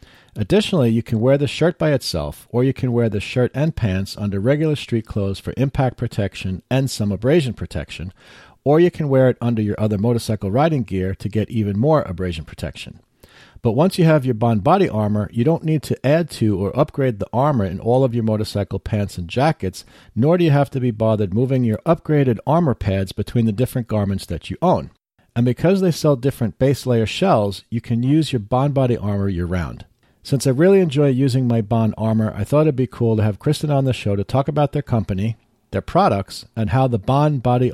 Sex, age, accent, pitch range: male, 50-69, American, 105-140 Hz